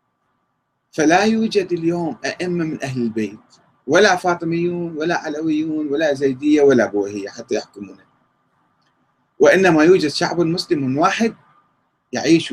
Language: Arabic